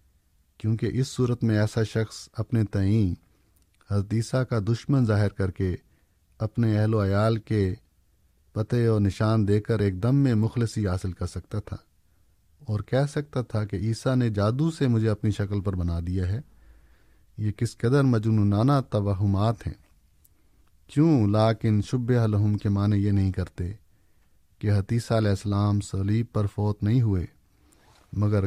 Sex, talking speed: male, 155 wpm